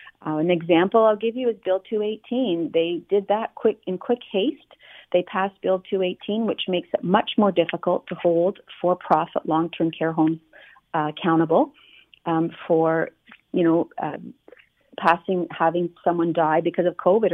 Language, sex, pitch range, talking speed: English, female, 165-210 Hz, 160 wpm